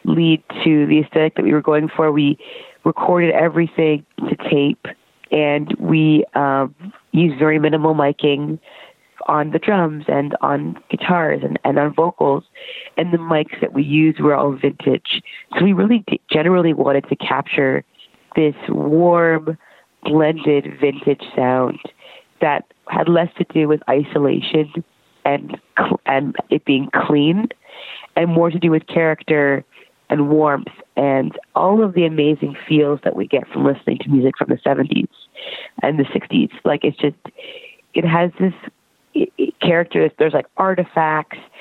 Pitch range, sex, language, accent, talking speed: 145-170 Hz, female, English, American, 150 wpm